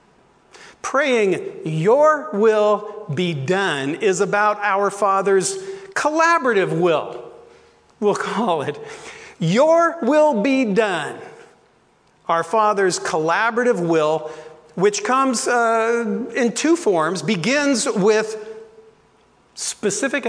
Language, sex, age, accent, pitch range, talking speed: English, male, 50-69, American, 185-300 Hz, 90 wpm